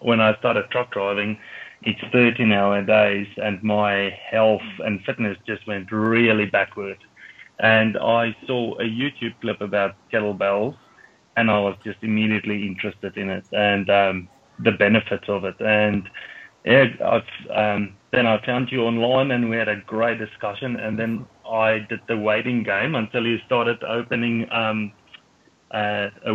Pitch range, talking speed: 105-115 Hz, 155 wpm